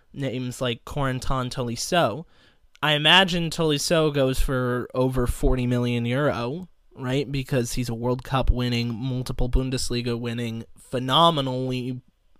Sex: male